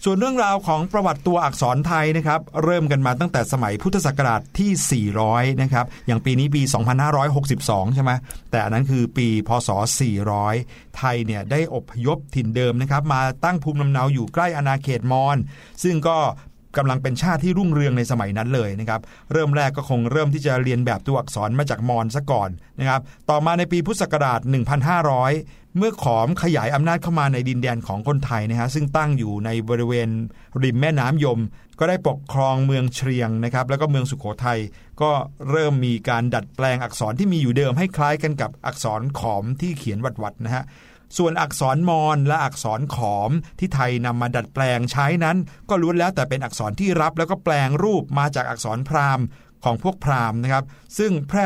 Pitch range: 120-150 Hz